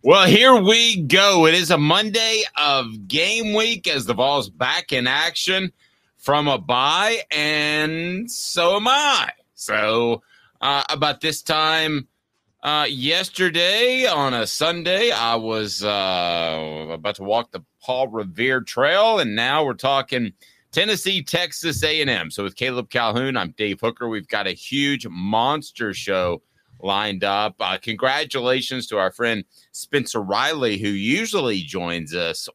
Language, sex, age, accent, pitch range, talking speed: English, male, 30-49, American, 95-150 Hz, 140 wpm